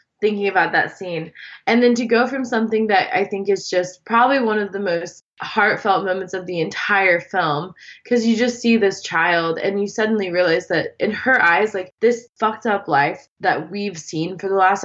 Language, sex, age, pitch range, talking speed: English, female, 20-39, 175-220 Hz, 205 wpm